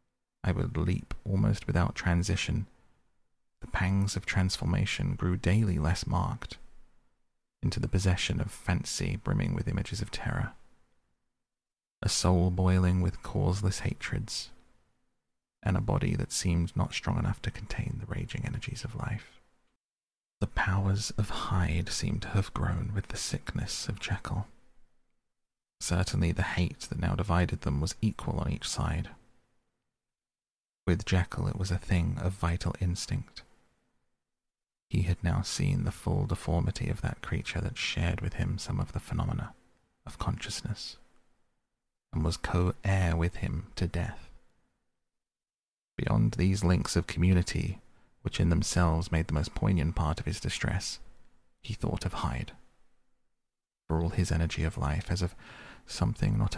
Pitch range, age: 85-110 Hz, 30-49